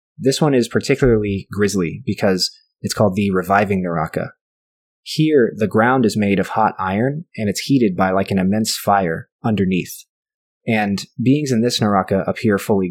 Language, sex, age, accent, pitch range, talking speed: English, male, 20-39, American, 95-115 Hz, 165 wpm